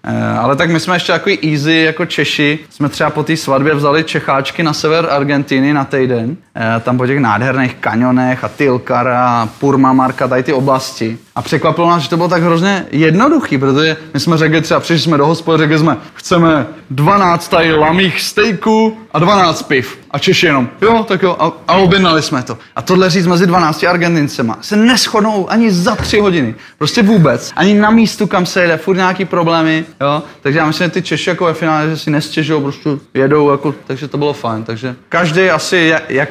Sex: male